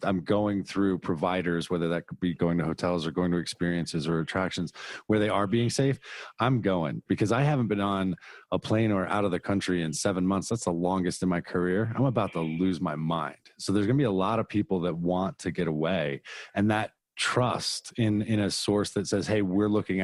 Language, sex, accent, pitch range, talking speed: English, male, American, 90-110 Hz, 230 wpm